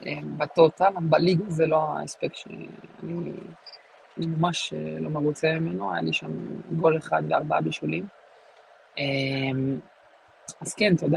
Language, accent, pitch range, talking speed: Hebrew, Italian, 150-170 Hz, 115 wpm